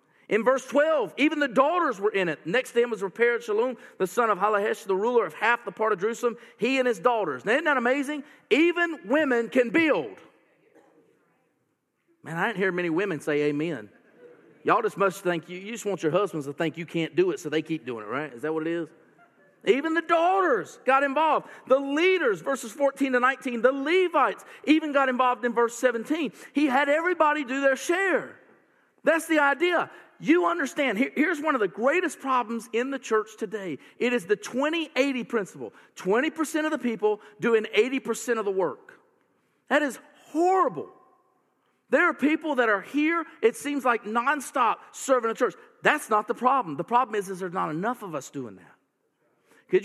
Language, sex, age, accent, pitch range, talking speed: English, male, 40-59, American, 215-305 Hz, 190 wpm